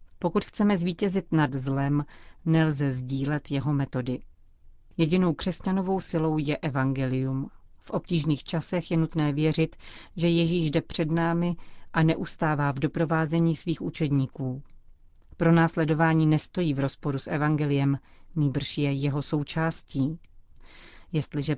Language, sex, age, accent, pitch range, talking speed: Czech, female, 40-59, native, 140-165 Hz, 120 wpm